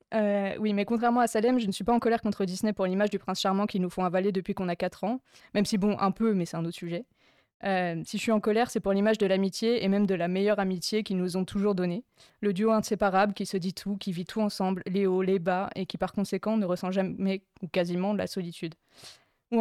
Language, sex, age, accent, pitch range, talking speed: French, female, 20-39, French, 185-210 Hz, 270 wpm